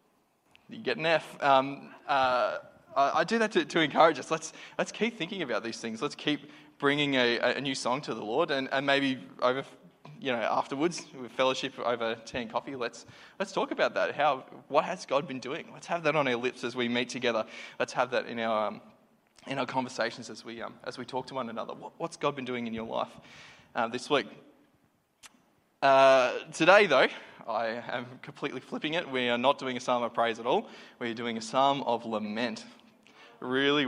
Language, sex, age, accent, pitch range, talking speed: English, male, 20-39, Australian, 120-150 Hz, 210 wpm